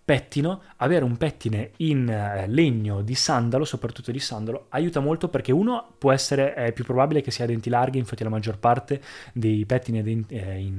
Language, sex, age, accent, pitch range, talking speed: Italian, male, 20-39, native, 110-140 Hz, 165 wpm